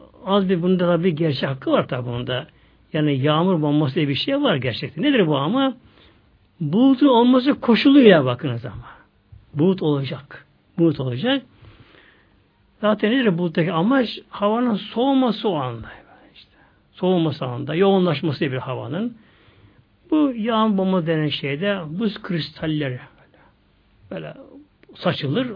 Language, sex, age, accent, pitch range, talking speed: Turkish, male, 60-79, native, 150-230 Hz, 130 wpm